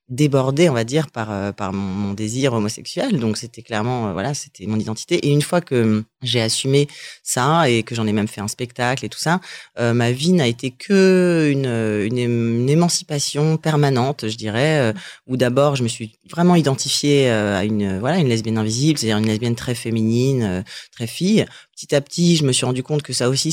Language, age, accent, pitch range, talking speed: French, 30-49, French, 115-145 Hz, 205 wpm